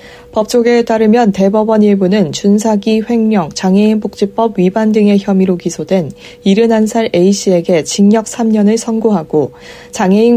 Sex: female